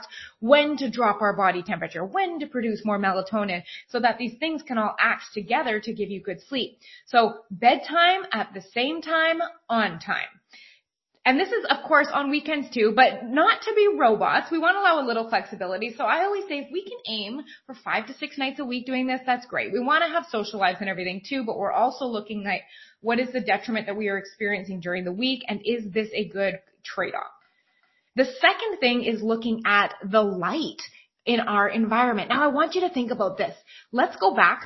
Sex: female